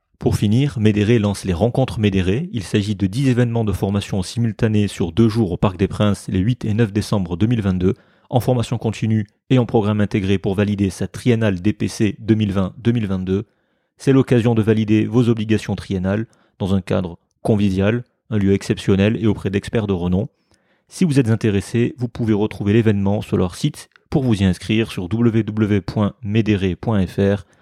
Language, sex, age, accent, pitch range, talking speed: French, male, 30-49, French, 100-115 Hz, 165 wpm